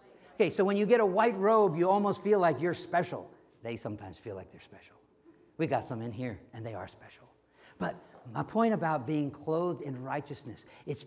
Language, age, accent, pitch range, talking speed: English, 50-69, American, 175-250 Hz, 205 wpm